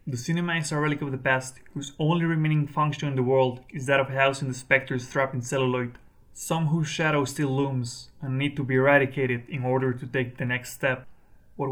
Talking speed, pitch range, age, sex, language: 215 wpm, 125-145 Hz, 20-39, male, English